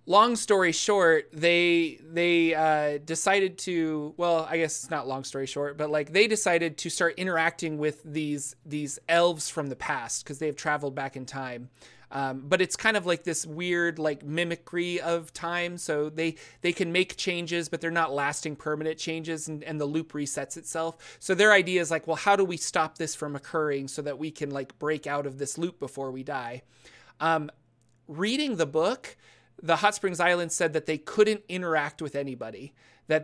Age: 30-49